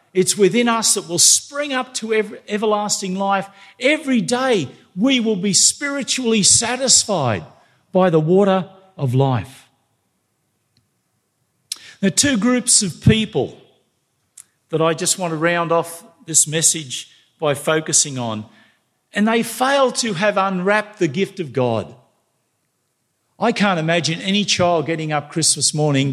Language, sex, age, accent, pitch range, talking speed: English, male, 50-69, Australian, 135-210 Hz, 135 wpm